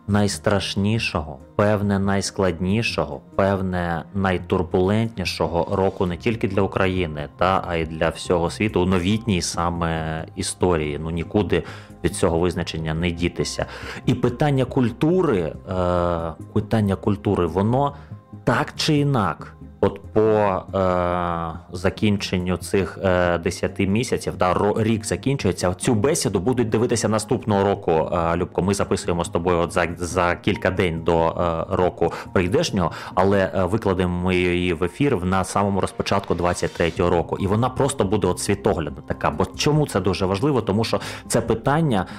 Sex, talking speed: male, 135 wpm